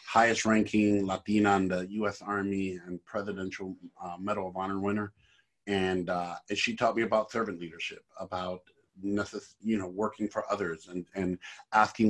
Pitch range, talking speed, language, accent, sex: 95-110 Hz, 160 wpm, English, American, male